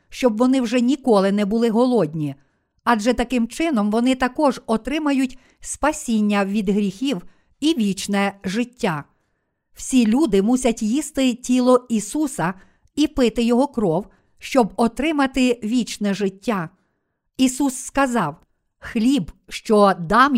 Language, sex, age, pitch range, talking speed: Ukrainian, female, 50-69, 205-250 Hz, 110 wpm